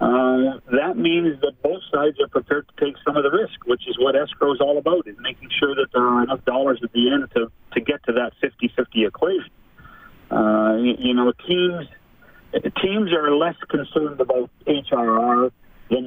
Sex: male